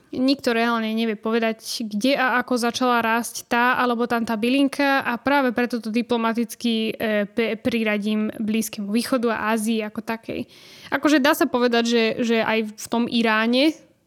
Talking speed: 155 wpm